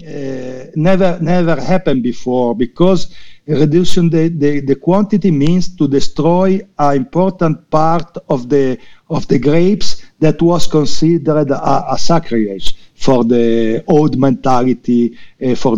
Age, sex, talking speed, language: 50-69, male, 130 wpm, English